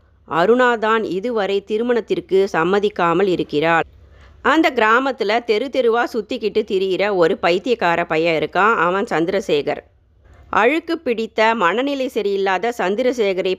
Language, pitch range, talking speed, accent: Tamil, 185-240 Hz, 95 wpm, native